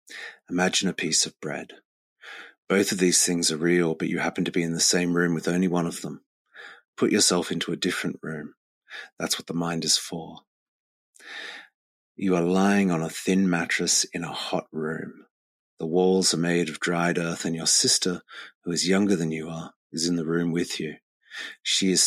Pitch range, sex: 80-90 Hz, male